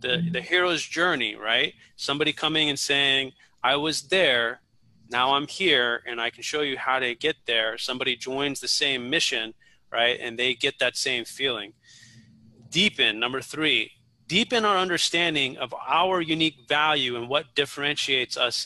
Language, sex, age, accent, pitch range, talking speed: English, male, 30-49, American, 125-165 Hz, 160 wpm